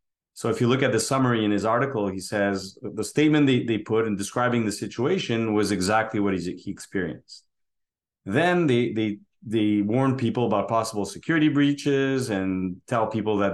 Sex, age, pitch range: male, 30-49, 100-125 Hz